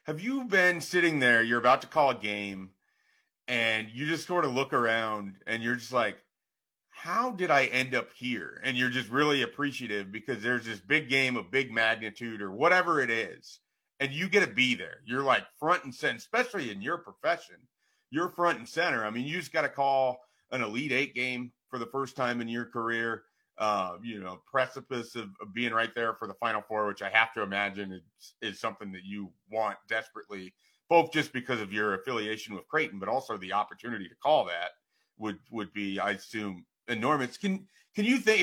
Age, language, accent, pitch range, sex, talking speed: 40-59, English, American, 110-140 Hz, male, 205 wpm